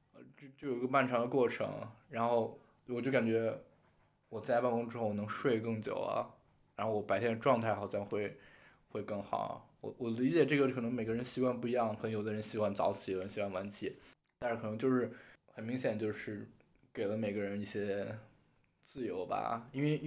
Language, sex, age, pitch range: Chinese, male, 20-39, 110-130 Hz